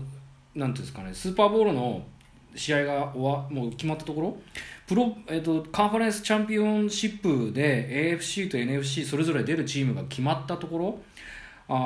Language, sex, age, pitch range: Japanese, male, 20-39, 110-175 Hz